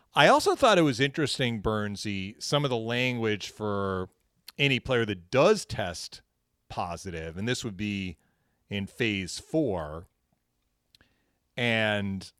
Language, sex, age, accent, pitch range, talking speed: English, male, 40-59, American, 95-120 Hz, 125 wpm